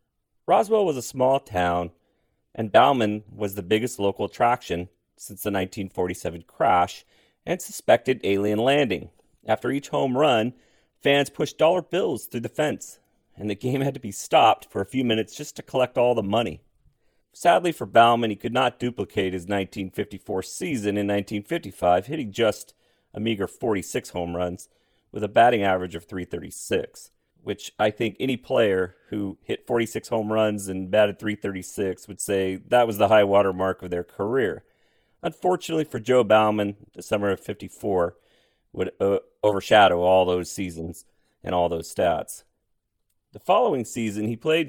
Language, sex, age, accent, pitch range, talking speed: English, male, 40-59, American, 95-125 Hz, 160 wpm